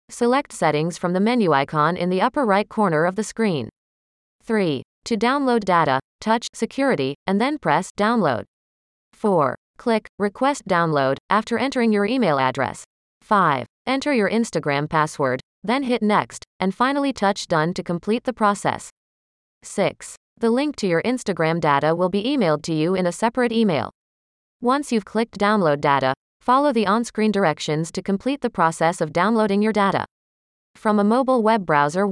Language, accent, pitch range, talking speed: English, American, 155-230 Hz, 165 wpm